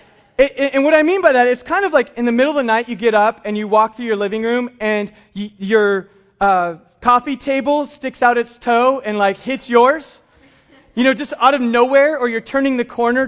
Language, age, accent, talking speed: English, 20-39, American, 225 wpm